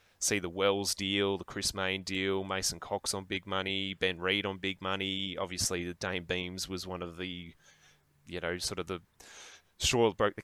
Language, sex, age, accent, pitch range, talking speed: English, male, 10-29, Australian, 95-105 Hz, 200 wpm